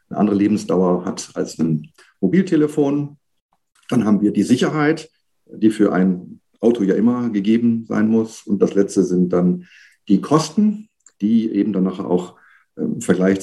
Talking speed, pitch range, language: 150 wpm, 95-120 Hz, German